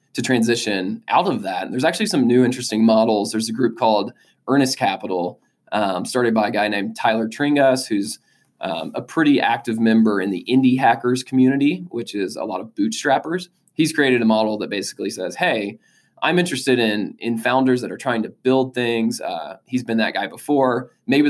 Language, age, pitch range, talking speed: English, 20-39, 110-135 Hz, 195 wpm